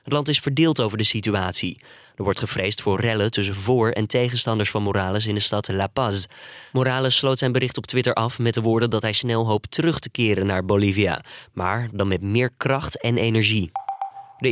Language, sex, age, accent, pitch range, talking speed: Dutch, male, 20-39, Dutch, 100-125 Hz, 205 wpm